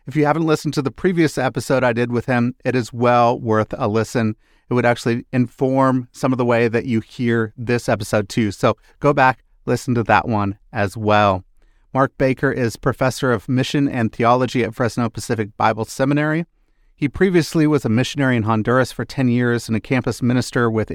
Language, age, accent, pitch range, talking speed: English, 30-49, American, 115-135 Hz, 200 wpm